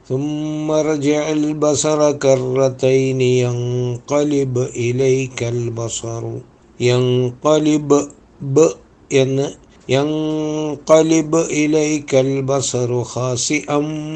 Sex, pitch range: male, 125-150 Hz